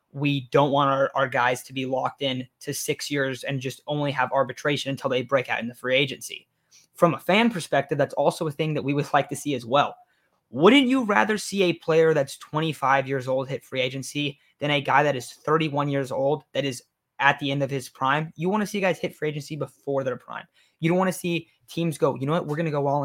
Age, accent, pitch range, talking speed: 20-39, American, 135-160 Hz, 255 wpm